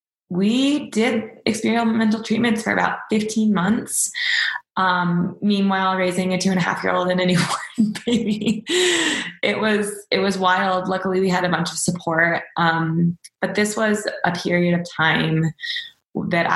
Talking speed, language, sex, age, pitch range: 155 wpm, English, female, 20-39, 165-205 Hz